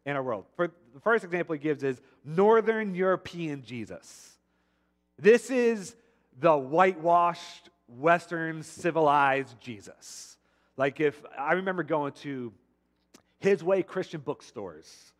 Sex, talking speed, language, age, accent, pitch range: male, 120 wpm, English, 40-59, American, 140-185 Hz